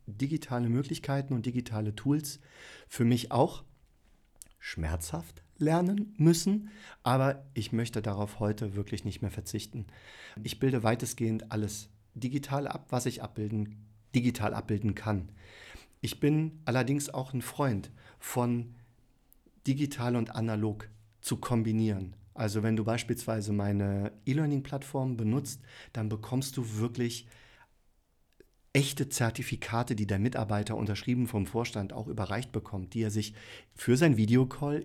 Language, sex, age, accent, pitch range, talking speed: German, male, 40-59, German, 105-130 Hz, 125 wpm